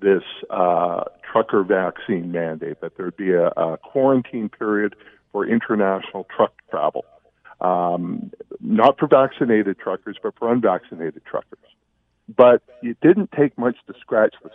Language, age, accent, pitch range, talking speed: English, 50-69, American, 95-130 Hz, 135 wpm